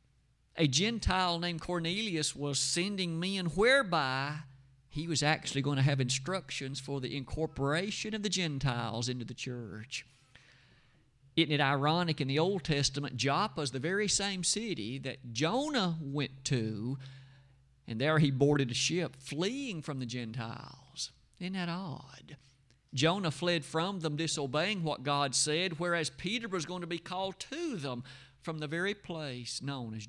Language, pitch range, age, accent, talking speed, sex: English, 135-180 Hz, 50-69, American, 155 wpm, male